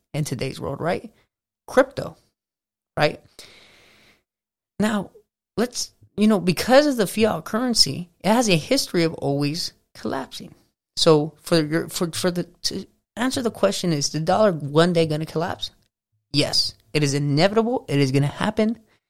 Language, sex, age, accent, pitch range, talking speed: English, male, 30-49, American, 150-210 Hz, 150 wpm